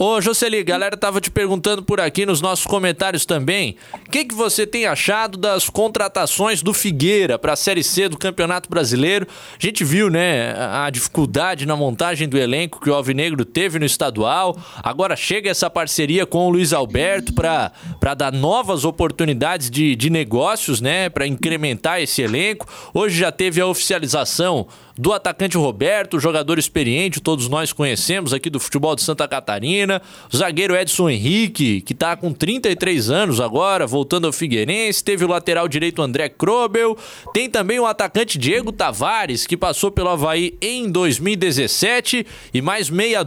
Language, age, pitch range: Portuguese, 20-39, 155-200 Hz